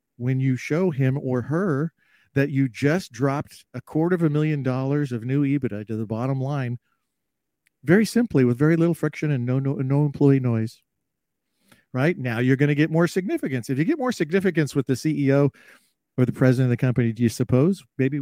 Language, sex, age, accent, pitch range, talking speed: English, male, 50-69, American, 130-160 Hz, 200 wpm